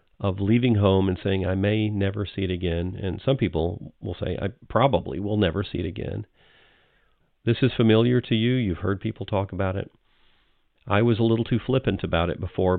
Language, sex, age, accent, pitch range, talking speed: English, male, 40-59, American, 90-115 Hz, 200 wpm